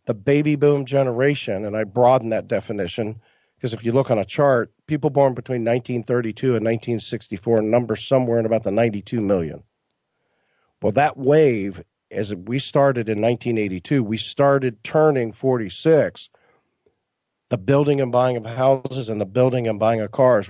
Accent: American